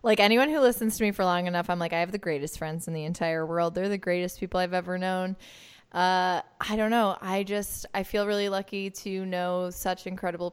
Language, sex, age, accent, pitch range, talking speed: English, female, 20-39, American, 170-200 Hz, 235 wpm